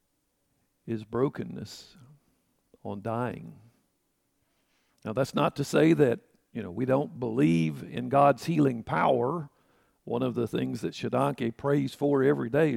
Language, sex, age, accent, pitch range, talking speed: English, male, 50-69, American, 110-140 Hz, 135 wpm